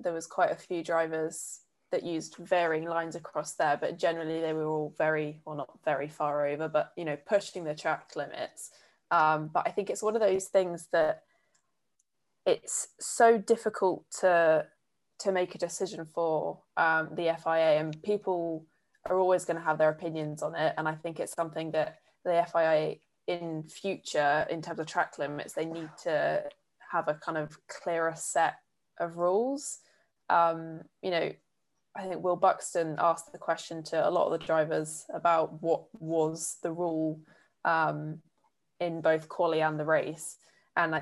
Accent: British